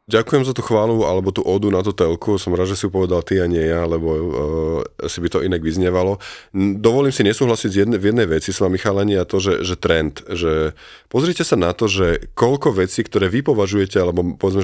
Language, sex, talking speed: Slovak, male, 225 wpm